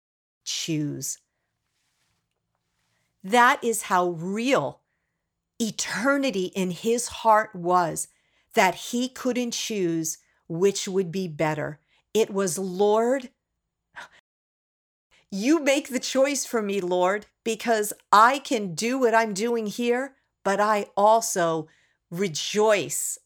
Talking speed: 105 wpm